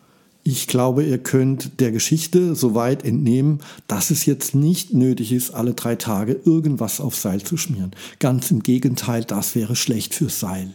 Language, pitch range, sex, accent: German, 115-155 Hz, male, German